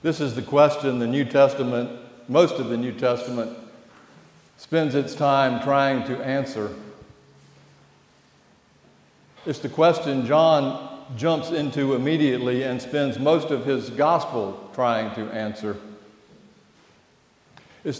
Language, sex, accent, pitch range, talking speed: English, male, American, 120-150 Hz, 115 wpm